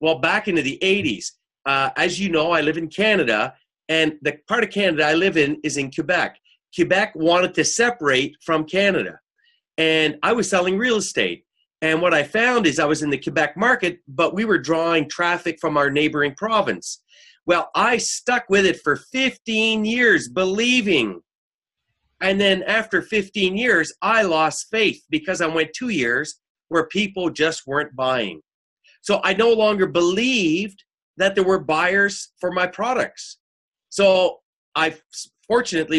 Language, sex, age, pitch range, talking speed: English, male, 40-59, 155-205 Hz, 160 wpm